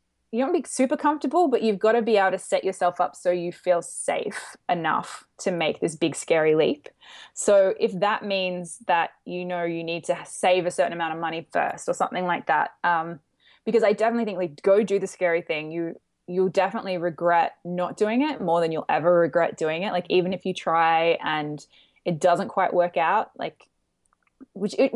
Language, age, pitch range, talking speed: English, 20-39, 175-215 Hz, 205 wpm